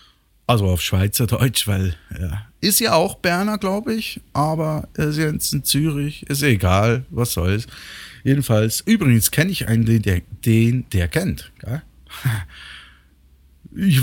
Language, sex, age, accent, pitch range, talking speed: German, male, 50-69, German, 95-135 Hz, 135 wpm